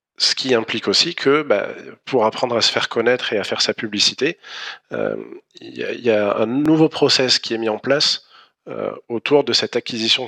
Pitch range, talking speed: 100-135 Hz, 205 wpm